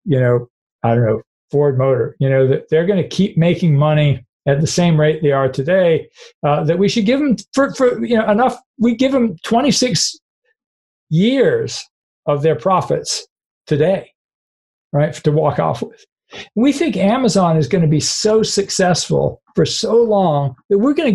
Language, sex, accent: English, male, American